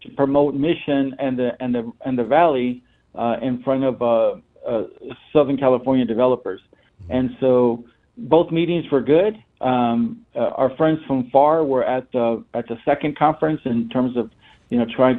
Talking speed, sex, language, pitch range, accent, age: 175 wpm, male, English, 125-150 Hz, American, 50-69